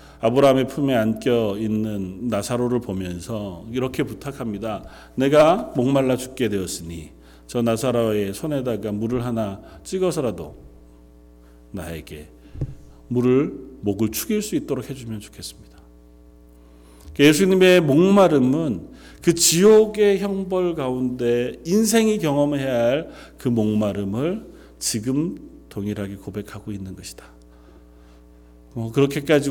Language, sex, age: Korean, male, 40-59